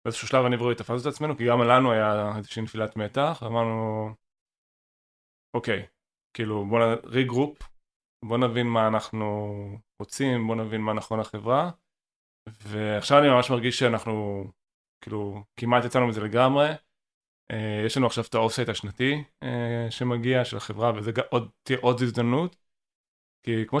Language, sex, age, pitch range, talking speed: Hebrew, male, 20-39, 110-125 Hz, 135 wpm